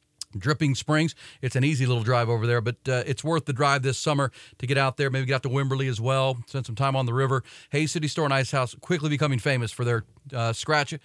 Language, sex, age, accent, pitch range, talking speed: English, male, 40-59, American, 125-155 Hz, 255 wpm